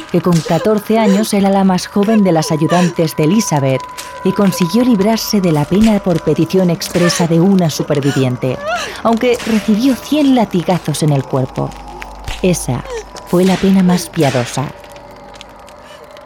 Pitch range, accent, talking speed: 165-215 Hz, Spanish, 140 wpm